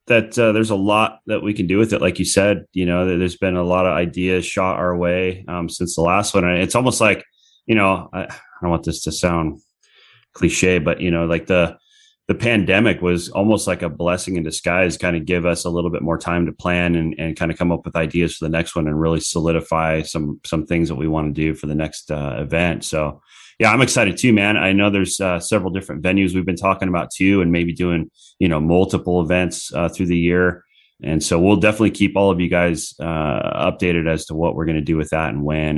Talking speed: 245 wpm